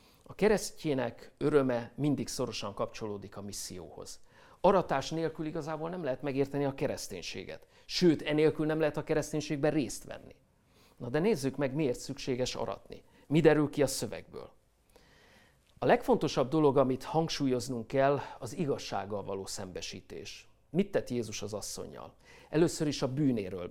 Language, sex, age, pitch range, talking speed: Hungarian, male, 50-69, 115-155 Hz, 140 wpm